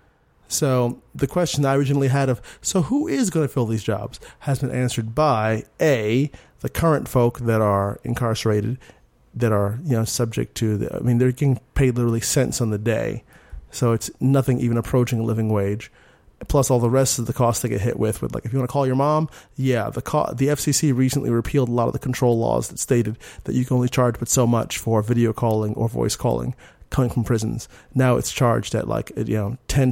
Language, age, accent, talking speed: English, 30-49, American, 225 wpm